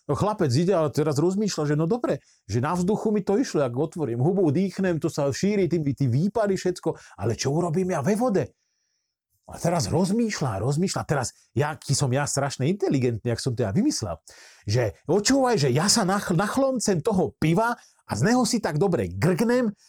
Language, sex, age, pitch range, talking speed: Slovak, male, 40-59, 135-190 Hz, 185 wpm